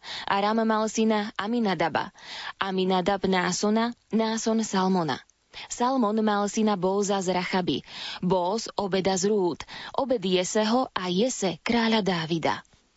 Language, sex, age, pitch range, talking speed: Slovak, female, 20-39, 185-220 Hz, 110 wpm